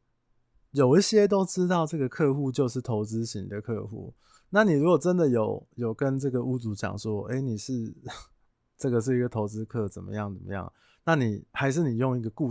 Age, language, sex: 20-39, Chinese, male